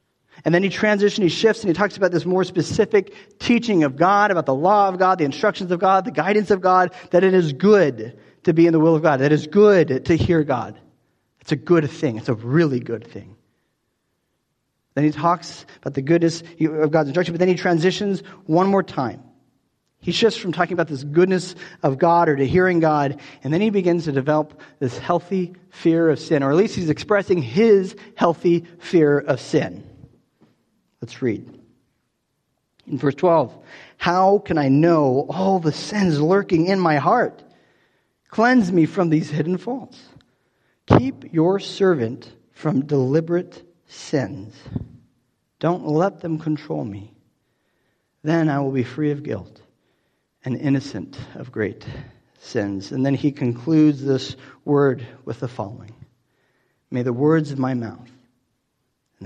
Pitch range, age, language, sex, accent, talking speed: 135-180 Hz, 40-59, English, male, American, 170 wpm